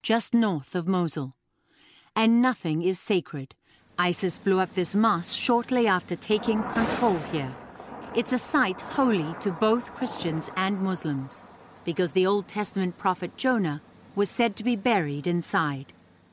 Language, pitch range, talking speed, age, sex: English, 170-230 Hz, 145 wpm, 40-59, female